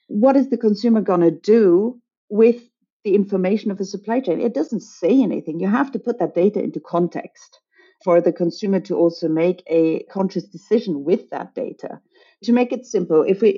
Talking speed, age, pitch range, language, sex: 195 wpm, 40-59, 165-220 Hz, English, female